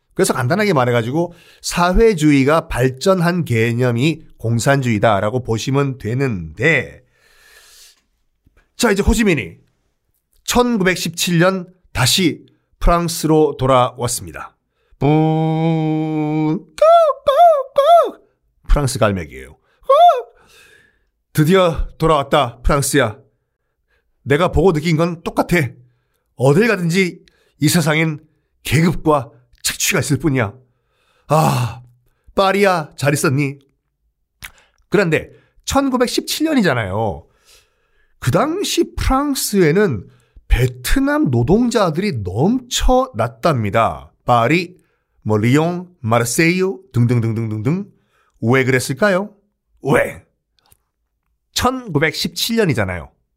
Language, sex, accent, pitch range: Korean, male, native, 125-195 Hz